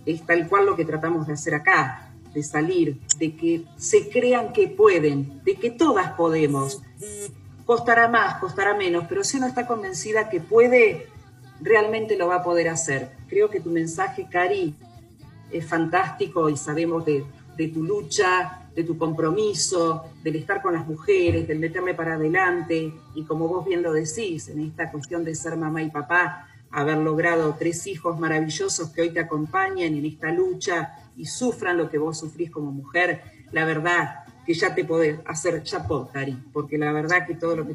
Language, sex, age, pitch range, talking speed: Spanish, female, 40-59, 150-195 Hz, 180 wpm